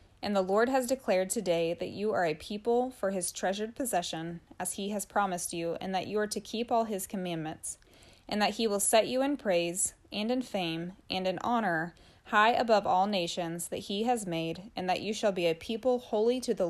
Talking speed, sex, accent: 220 wpm, female, American